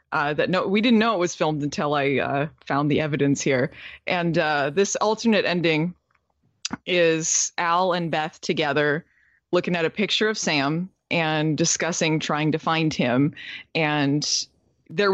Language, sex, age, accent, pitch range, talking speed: English, female, 20-39, American, 150-195 Hz, 160 wpm